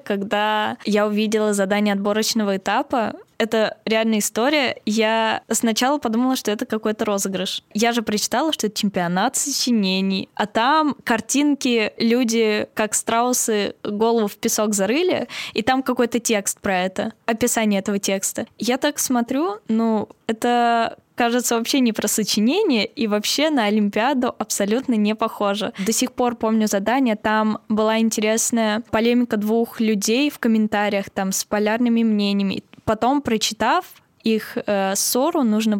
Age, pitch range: 10-29, 210-245 Hz